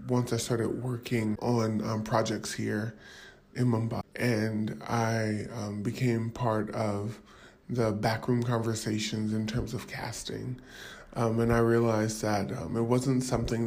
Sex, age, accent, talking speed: female, 20-39, American, 140 wpm